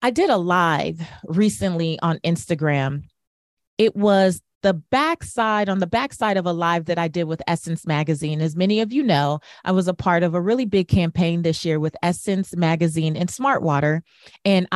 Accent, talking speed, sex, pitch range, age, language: American, 185 wpm, female, 165-195 Hz, 30-49, English